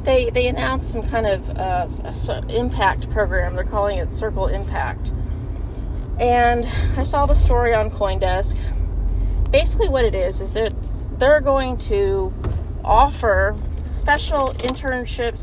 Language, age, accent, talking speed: English, 30-49, American, 130 wpm